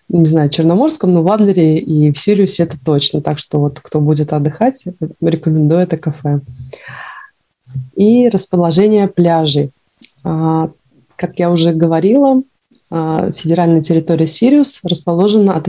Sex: female